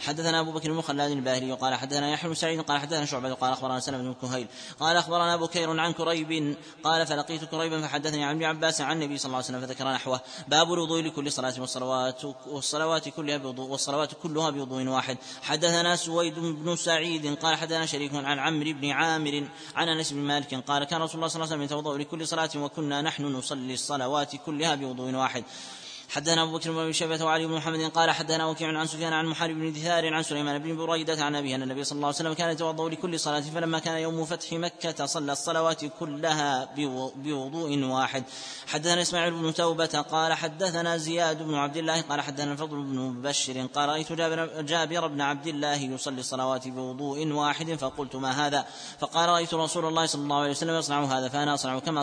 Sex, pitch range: male, 135-160 Hz